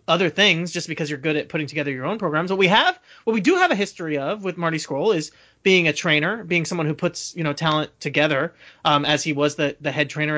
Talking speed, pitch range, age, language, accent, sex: 260 wpm, 150-190 Hz, 30-49, English, American, male